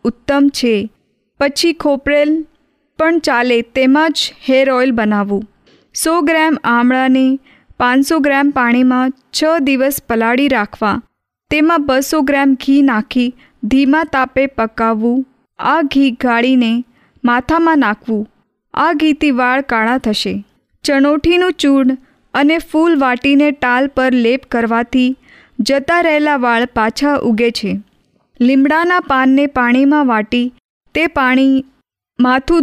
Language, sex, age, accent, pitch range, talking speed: Hindi, female, 20-39, native, 245-290 Hz, 115 wpm